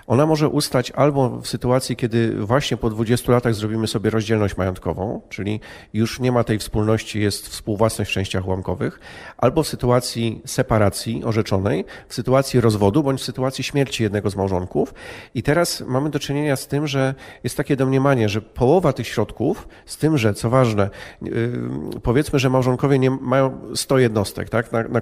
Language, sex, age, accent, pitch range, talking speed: Polish, male, 40-59, native, 110-135 Hz, 170 wpm